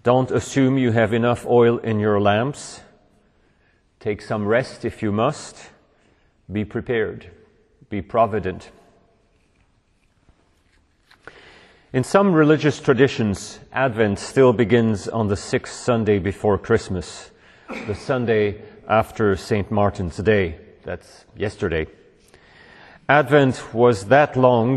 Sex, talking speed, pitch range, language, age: male, 105 wpm, 100-120 Hz, English, 40-59